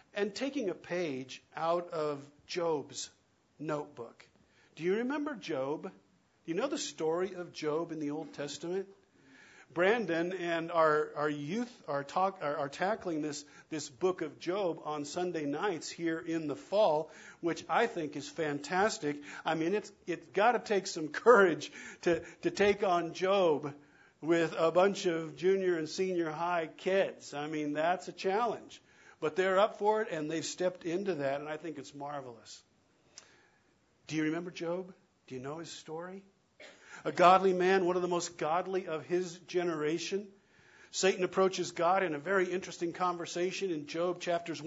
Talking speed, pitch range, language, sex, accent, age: 165 wpm, 160-195 Hz, English, male, American, 50-69